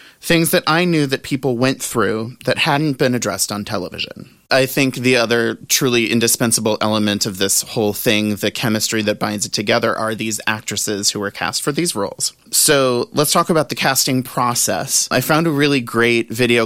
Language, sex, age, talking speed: English, male, 30-49, 190 wpm